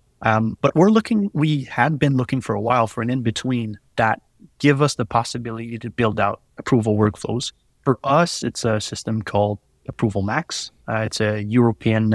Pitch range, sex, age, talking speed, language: 110-140 Hz, male, 30-49, 180 wpm, English